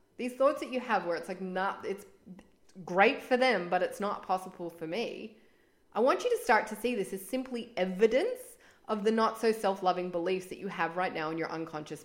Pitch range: 175-245 Hz